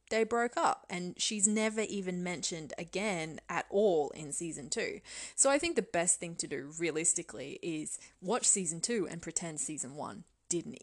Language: English